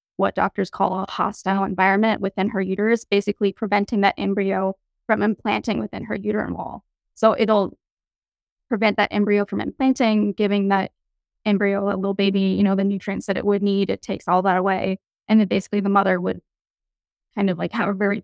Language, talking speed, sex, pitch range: English, 190 wpm, female, 195-215 Hz